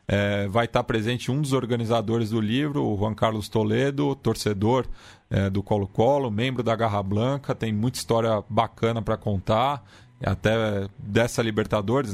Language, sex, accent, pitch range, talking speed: Portuguese, male, Brazilian, 105-125 Hz, 150 wpm